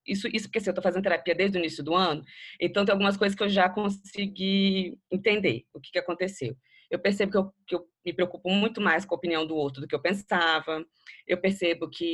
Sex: female